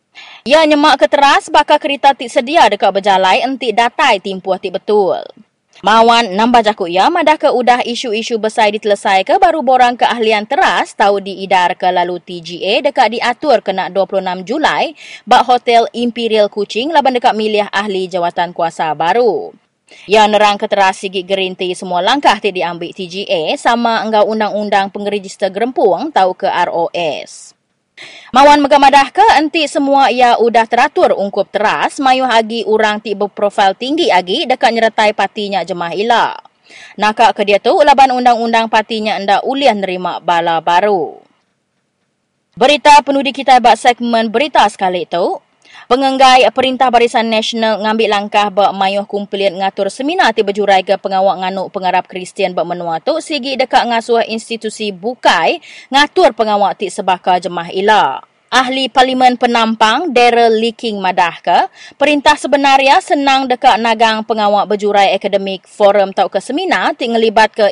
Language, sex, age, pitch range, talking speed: English, female, 20-39, 195-260 Hz, 145 wpm